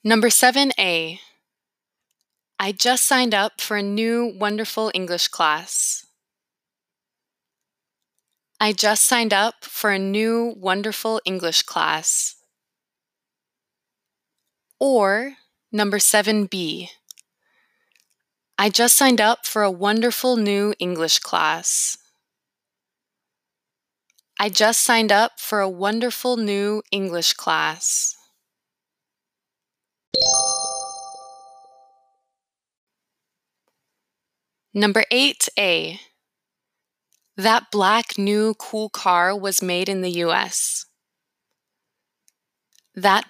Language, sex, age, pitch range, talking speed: English, female, 20-39, 185-225 Hz, 85 wpm